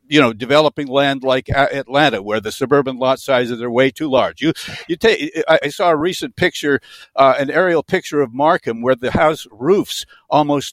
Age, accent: 60-79, American